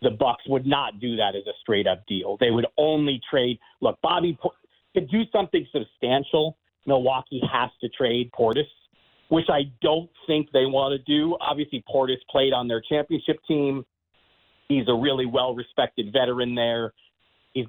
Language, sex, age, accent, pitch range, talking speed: English, male, 40-59, American, 120-150 Hz, 160 wpm